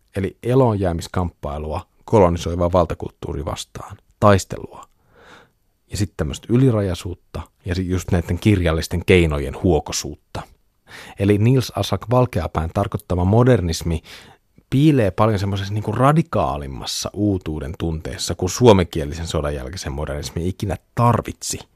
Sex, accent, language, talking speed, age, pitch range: male, native, Finnish, 100 wpm, 30-49, 85-105 Hz